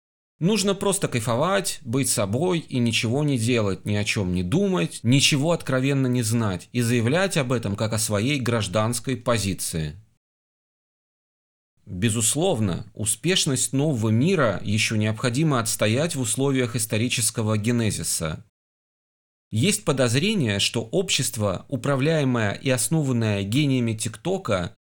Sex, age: male, 30-49